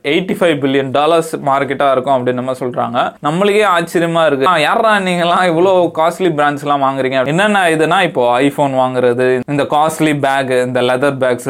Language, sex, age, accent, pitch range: Tamil, male, 20-39, native, 130-170 Hz